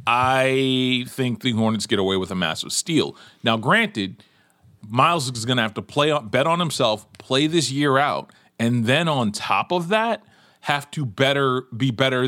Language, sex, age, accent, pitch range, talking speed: English, male, 30-49, American, 110-140 Hz, 180 wpm